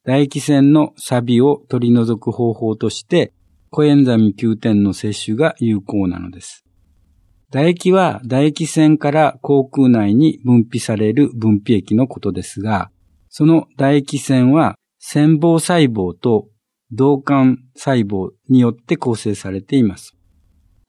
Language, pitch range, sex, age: Japanese, 110-145 Hz, male, 50-69